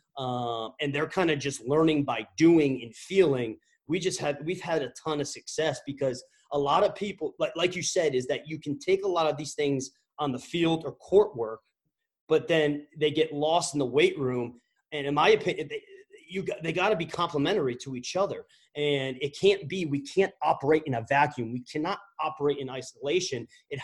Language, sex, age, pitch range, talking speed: English, male, 30-49, 140-175 Hz, 210 wpm